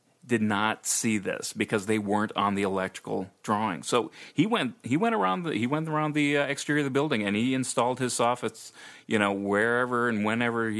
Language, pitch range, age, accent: English, 100-115 Hz, 30-49, American